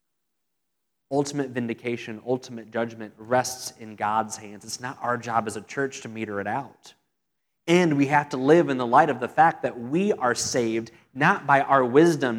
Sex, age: male, 20-39